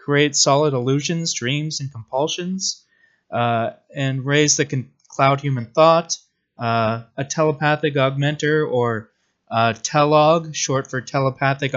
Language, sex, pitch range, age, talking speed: English, male, 115-145 Hz, 20-39, 120 wpm